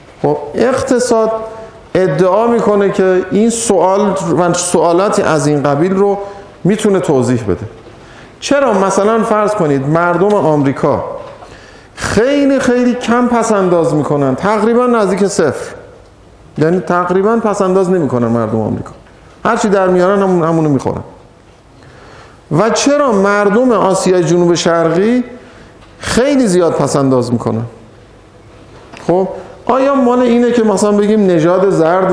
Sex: male